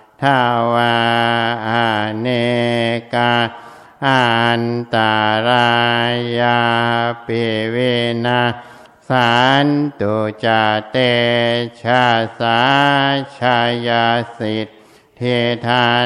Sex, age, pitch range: male, 60-79, 115-120 Hz